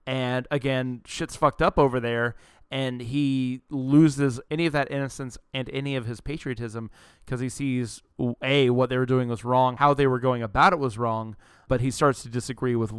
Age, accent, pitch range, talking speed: 20-39, American, 120-145 Hz, 200 wpm